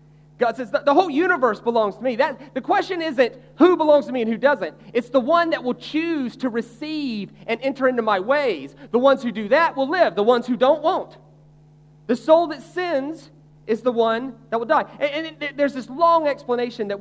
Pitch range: 170-260 Hz